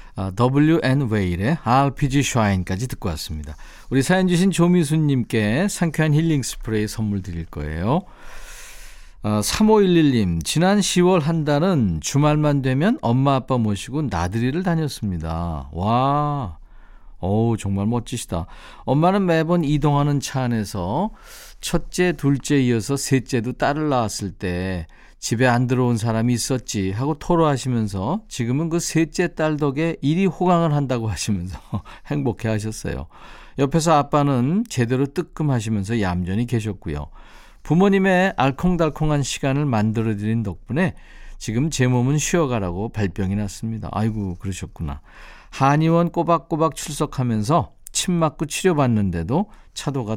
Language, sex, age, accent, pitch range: Korean, male, 50-69, native, 105-160 Hz